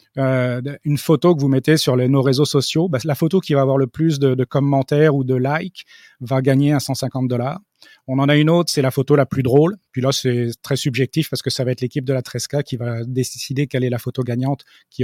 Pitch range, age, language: 130-150 Hz, 30-49, French